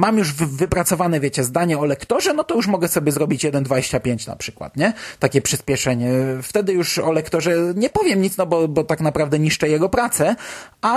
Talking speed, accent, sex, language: 190 wpm, native, male, Polish